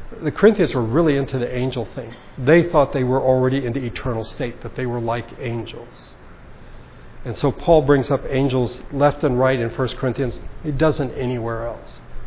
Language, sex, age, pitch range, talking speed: English, male, 60-79, 125-155 Hz, 185 wpm